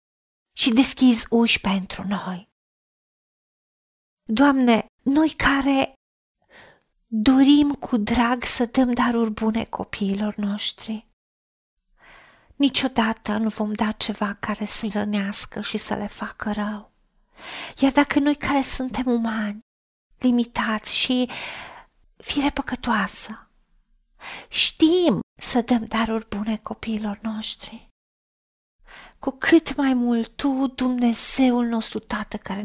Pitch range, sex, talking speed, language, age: 220-275 Hz, female, 100 wpm, Romanian, 40-59